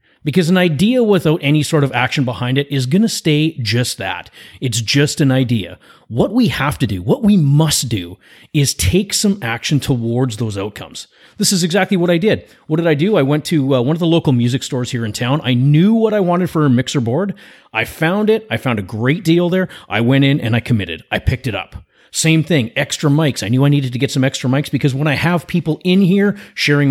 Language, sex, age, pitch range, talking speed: English, male, 30-49, 125-165 Hz, 240 wpm